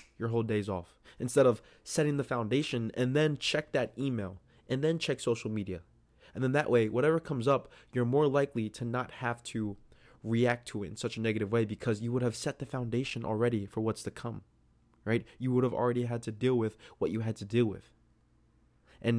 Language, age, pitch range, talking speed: English, 20-39, 105-120 Hz, 215 wpm